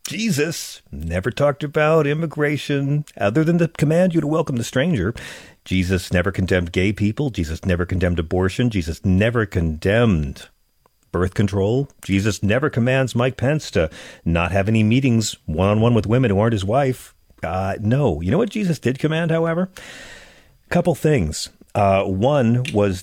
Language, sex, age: English, male, 40-59